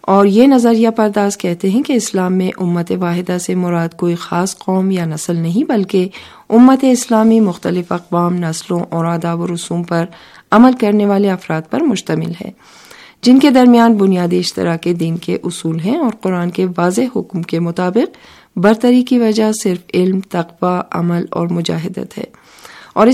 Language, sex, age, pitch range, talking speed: Urdu, female, 40-59, 175-210 Hz, 170 wpm